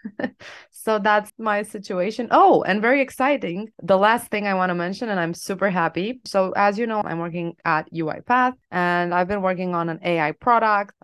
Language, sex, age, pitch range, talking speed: English, female, 20-39, 165-205 Hz, 190 wpm